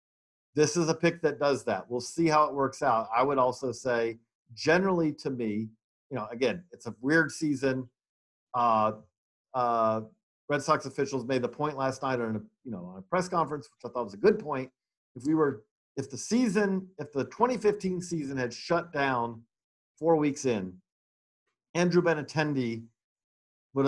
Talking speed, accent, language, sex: 180 wpm, American, English, male